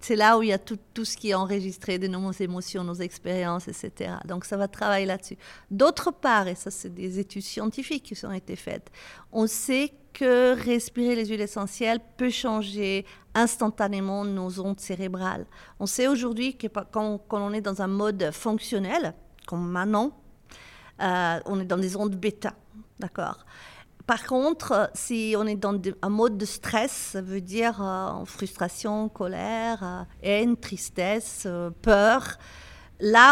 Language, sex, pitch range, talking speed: French, female, 190-230 Hz, 160 wpm